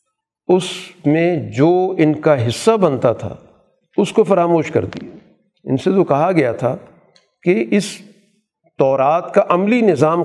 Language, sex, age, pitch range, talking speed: Urdu, male, 50-69, 140-185 Hz, 145 wpm